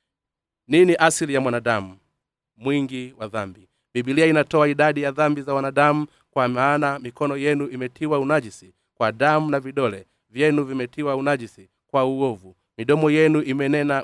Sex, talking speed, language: male, 135 wpm, Swahili